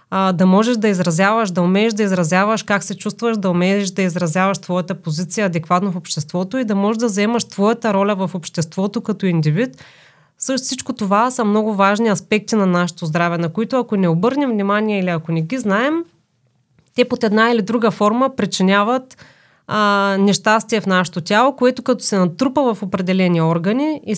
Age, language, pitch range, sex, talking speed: 30-49, Bulgarian, 185-230 Hz, female, 180 wpm